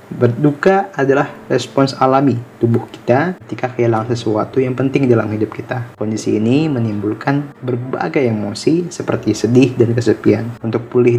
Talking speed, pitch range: 135 wpm, 110-135 Hz